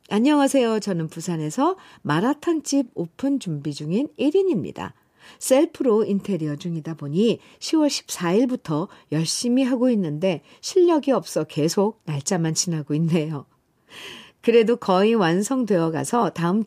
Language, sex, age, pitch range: Korean, female, 50-69, 160-240 Hz